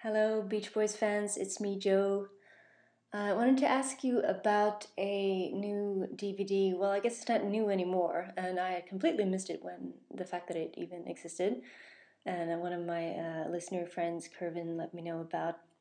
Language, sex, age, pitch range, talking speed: English, female, 30-49, 175-205 Hz, 180 wpm